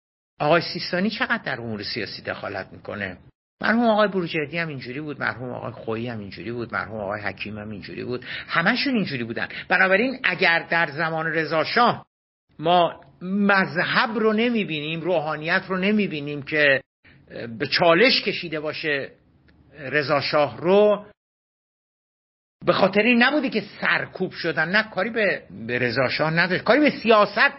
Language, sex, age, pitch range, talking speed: Persian, male, 50-69, 135-200 Hz, 135 wpm